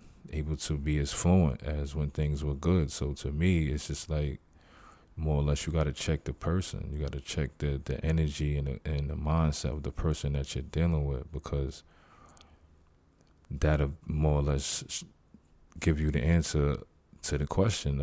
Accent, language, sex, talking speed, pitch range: American, English, male, 185 wpm, 70-80 Hz